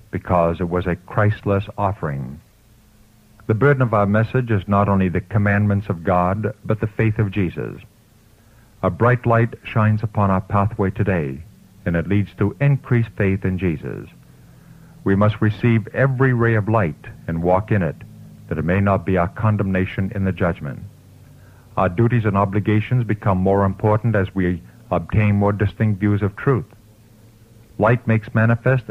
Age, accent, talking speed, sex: 50-69, American, 160 wpm, male